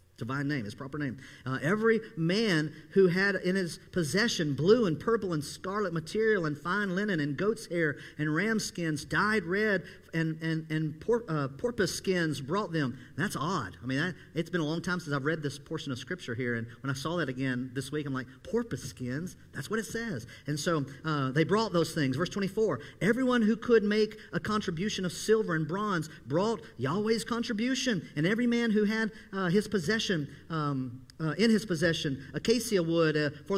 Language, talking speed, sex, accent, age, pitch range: English, 200 wpm, male, American, 50-69, 150-215 Hz